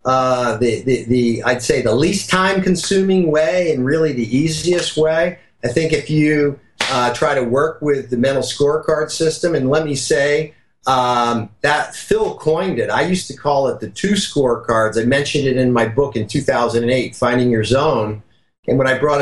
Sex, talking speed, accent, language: male, 190 wpm, American, English